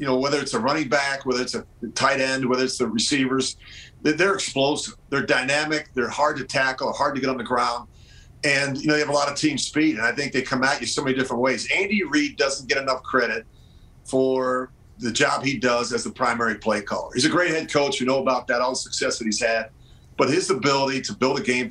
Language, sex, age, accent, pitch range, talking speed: English, male, 50-69, American, 120-145 Hz, 245 wpm